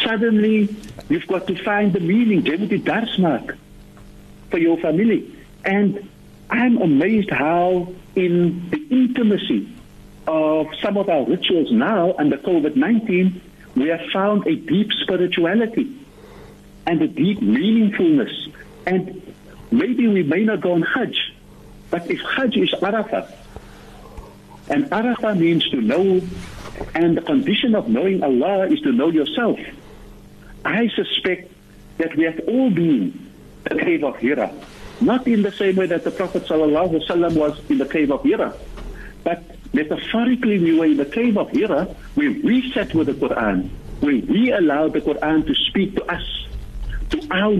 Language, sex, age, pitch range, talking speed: English, male, 60-79, 170-245 Hz, 150 wpm